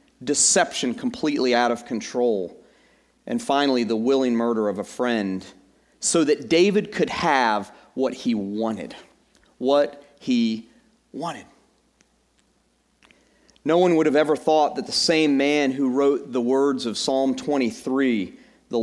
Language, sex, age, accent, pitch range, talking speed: English, male, 40-59, American, 115-180 Hz, 135 wpm